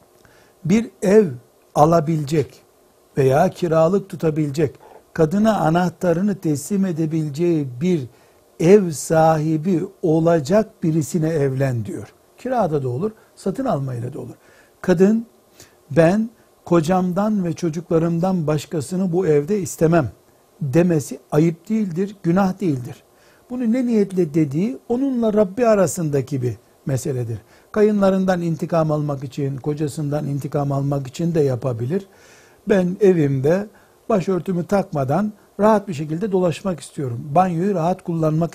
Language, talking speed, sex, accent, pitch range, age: Turkish, 105 wpm, male, native, 145-190 Hz, 60-79